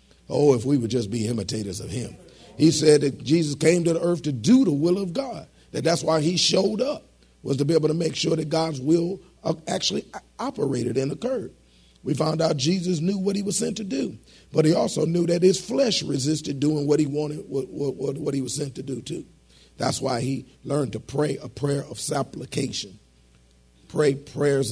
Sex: male